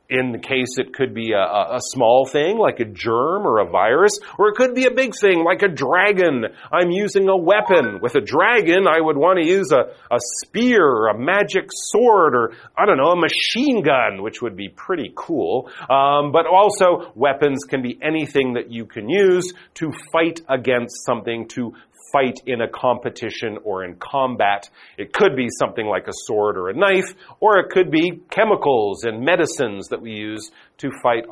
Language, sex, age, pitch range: Chinese, male, 40-59, 120-205 Hz